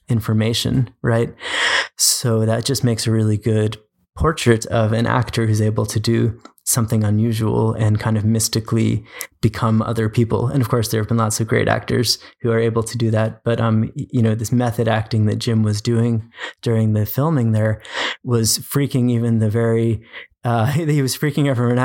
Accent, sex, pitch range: American, male, 110-120 Hz